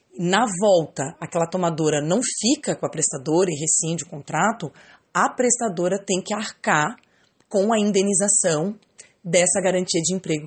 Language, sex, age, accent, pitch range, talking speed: Portuguese, female, 30-49, Brazilian, 160-200 Hz, 145 wpm